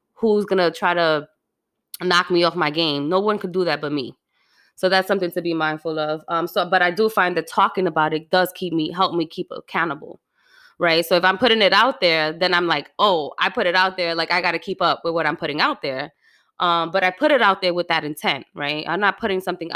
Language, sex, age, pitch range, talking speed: English, female, 20-39, 155-185 Hz, 260 wpm